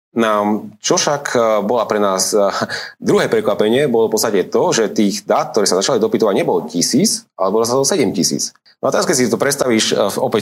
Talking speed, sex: 200 wpm, male